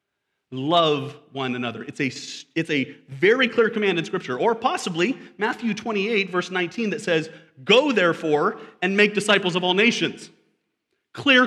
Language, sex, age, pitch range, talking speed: English, male, 30-49, 150-205 Hz, 145 wpm